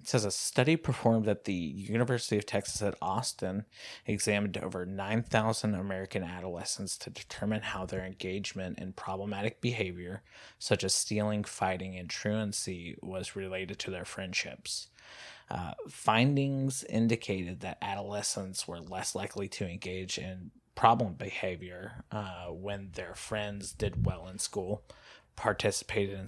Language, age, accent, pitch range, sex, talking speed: English, 30-49, American, 95-110 Hz, male, 135 wpm